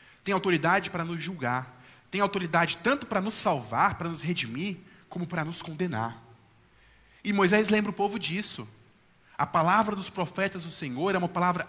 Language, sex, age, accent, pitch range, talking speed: Portuguese, male, 20-39, Brazilian, 135-200 Hz, 170 wpm